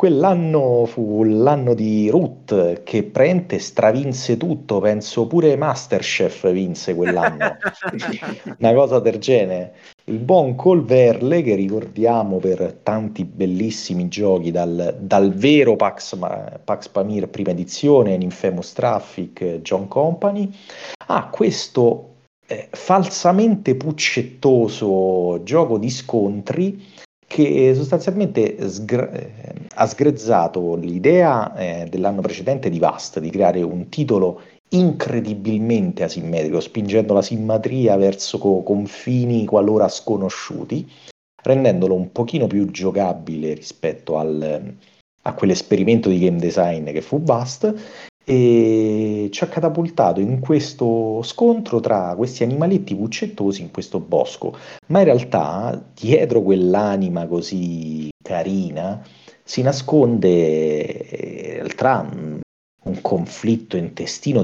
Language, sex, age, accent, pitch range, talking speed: Italian, male, 40-59, native, 95-140 Hz, 105 wpm